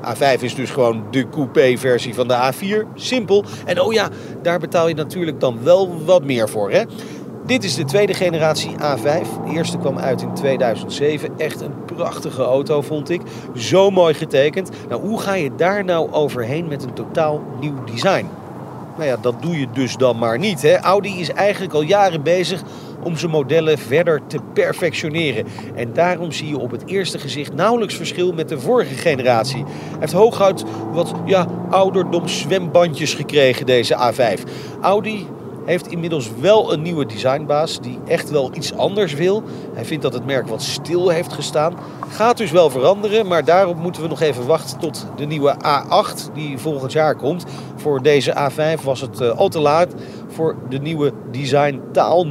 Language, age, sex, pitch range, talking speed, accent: Dutch, 40-59, male, 140-180 Hz, 180 wpm, Dutch